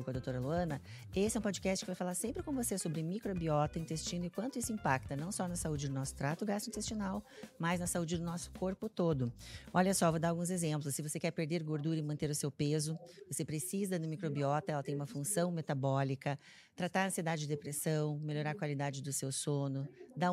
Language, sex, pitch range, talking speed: Portuguese, female, 150-195 Hz, 215 wpm